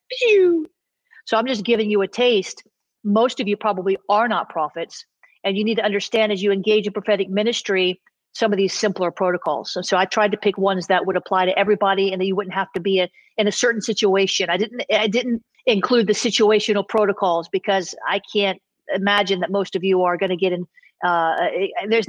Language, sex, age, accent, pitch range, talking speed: English, female, 50-69, American, 195-245 Hz, 210 wpm